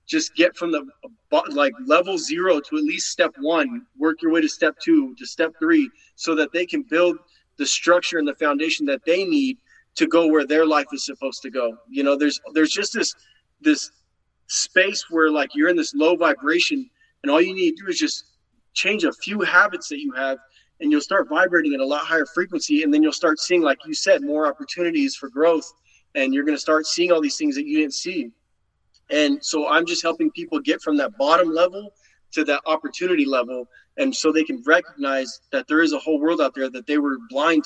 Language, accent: English, American